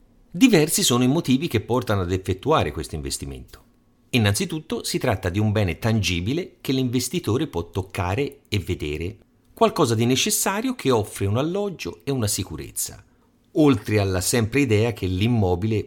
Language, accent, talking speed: Italian, native, 150 wpm